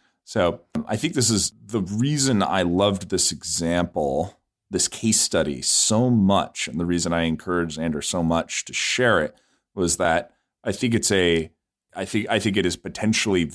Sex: male